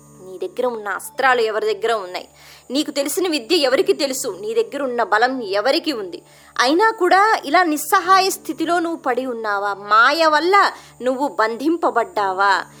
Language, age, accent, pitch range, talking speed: Telugu, 20-39, native, 230-355 Hz, 140 wpm